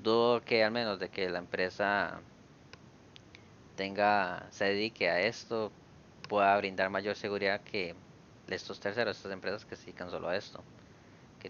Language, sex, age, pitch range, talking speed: Spanish, male, 20-39, 95-115 Hz, 150 wpm